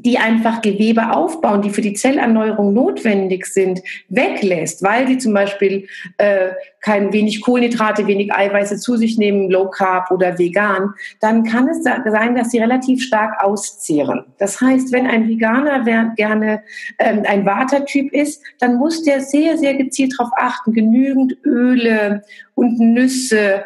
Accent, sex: German, female